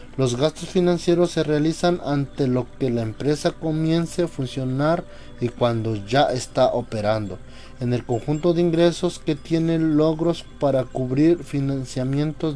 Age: 30-49